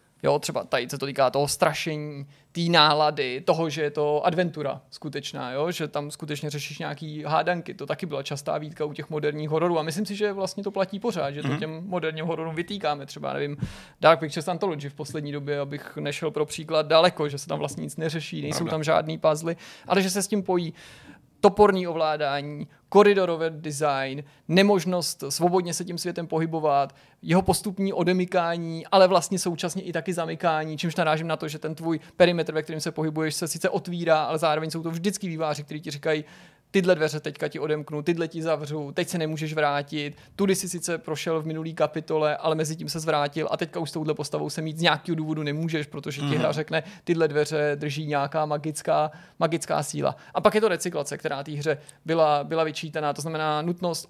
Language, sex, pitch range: Czech, male, 150-175 Hz